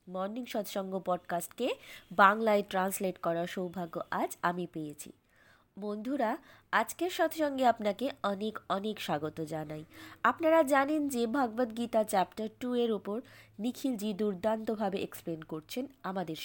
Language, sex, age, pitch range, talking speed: Bengali, female, 20-39, 190-265 Hz, 115 wpm